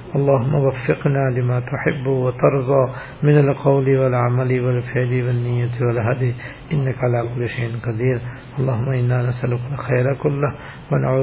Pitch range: 125-140 Hz